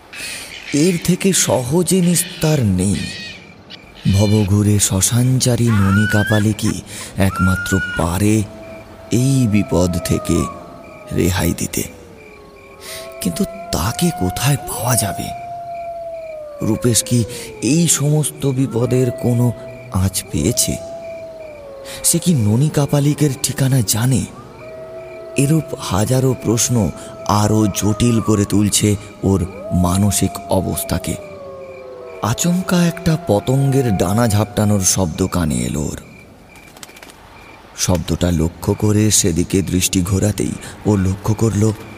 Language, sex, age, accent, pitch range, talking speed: Bengali, male, 30-49, native, 100-135 Hz, 55 wpm